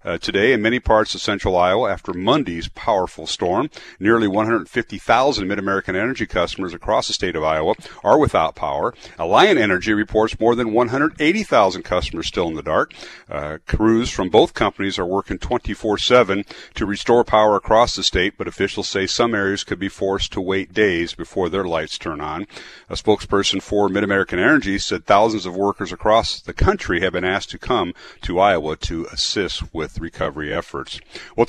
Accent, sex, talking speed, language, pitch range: American, male, 175 wpm, English, 90-115 Hz